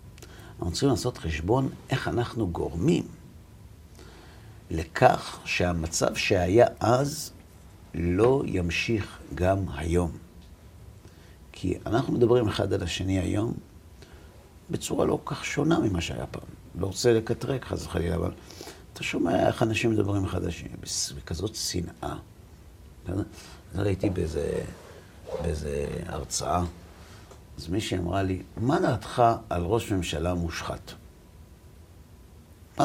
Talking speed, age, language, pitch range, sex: 115 wpm, 50-69, Hebrew, 85-110 Hz, male